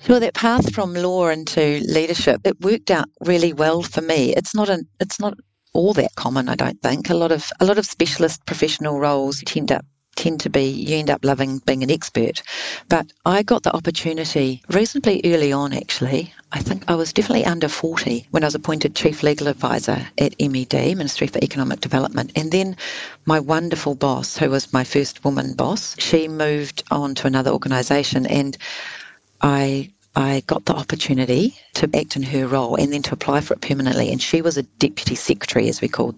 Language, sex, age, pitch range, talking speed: English, female, 50-69, 145-180 Hz, 200 wpm